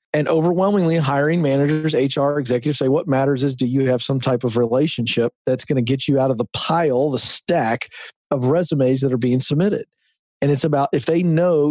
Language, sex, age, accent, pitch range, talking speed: English, male, 40-59, American, 135-165 Hz, 205 wpm